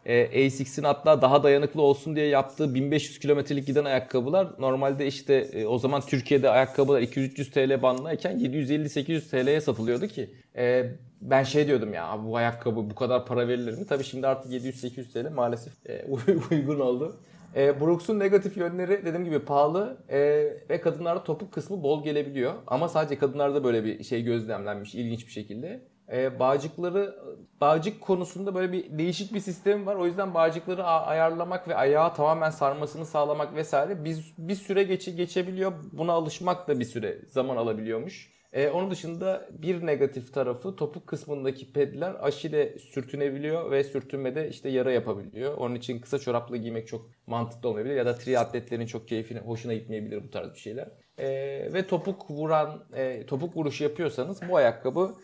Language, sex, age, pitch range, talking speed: Turkish, male, 30-49, 130-170 Hz, 165 wpm